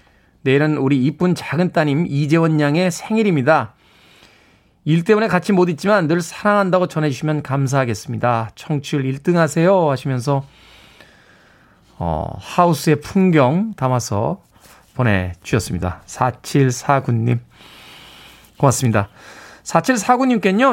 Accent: native